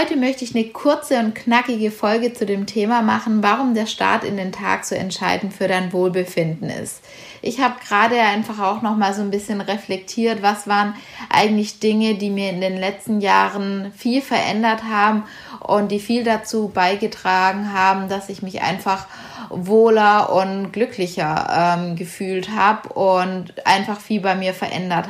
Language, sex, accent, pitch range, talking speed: German, female, German, 195-225 Hz, 165 wpm